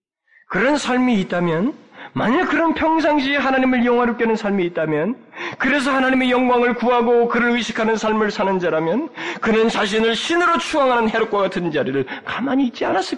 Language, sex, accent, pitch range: Korean, male, native, 180-230 Hz